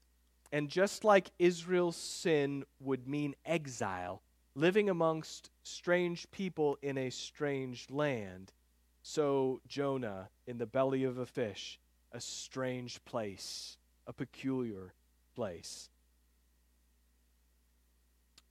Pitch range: 95-150 Hz